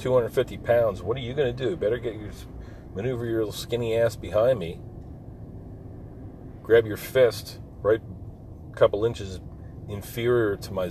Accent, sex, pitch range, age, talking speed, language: American, male, 95-115 Hz, 40-59, 155 wpm, English